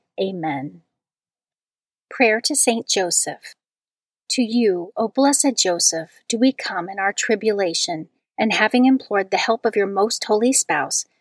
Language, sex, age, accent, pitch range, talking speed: English, female, 40-59, American, 205-250 Hz, 140 wpm